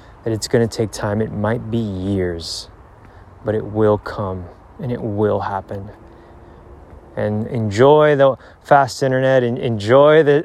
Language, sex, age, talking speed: English, male, 20-39, 150 wpm